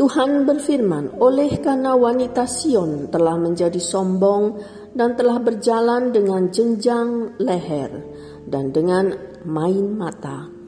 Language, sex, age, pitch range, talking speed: Indonesian, female, 50-69, 170-245 Hz, 105 wpm